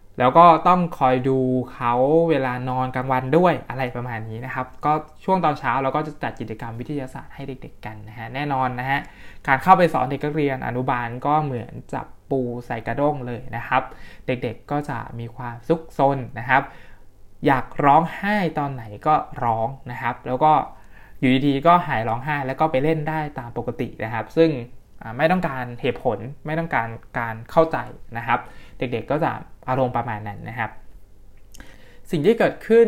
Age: 20-39